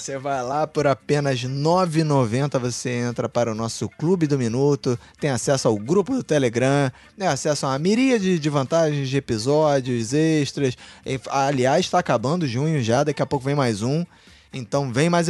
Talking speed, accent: 180 wpm, Brazilian